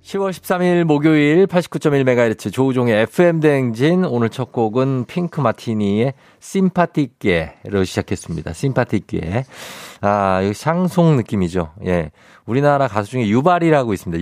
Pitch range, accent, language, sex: 105-150 Hz, native, Korean, male